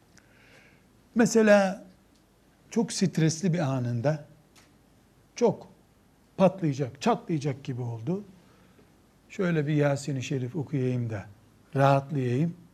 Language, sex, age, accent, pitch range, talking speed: Turkish, male, 60-79, native, 145-190 Hz, 80 wpm